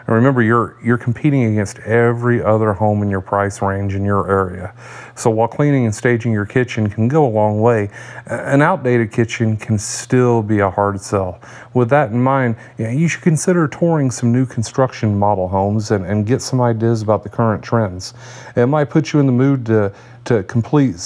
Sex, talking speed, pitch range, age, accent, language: male, 195 wpm, 105-125 Hz, 40-59, American, English